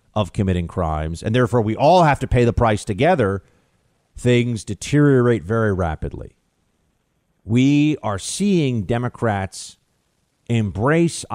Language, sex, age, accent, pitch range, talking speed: English, male, 40-59, American, 95-130 Hz, 115 wpm